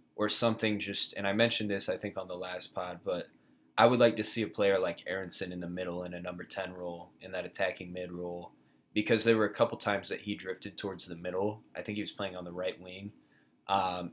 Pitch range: 90-105 Hz